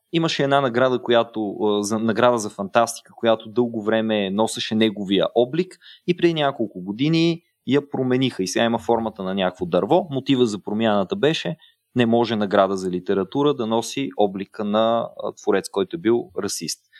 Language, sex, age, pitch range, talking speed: Bulgarian, male, 20-39, 100-135 Hz, 160 wpm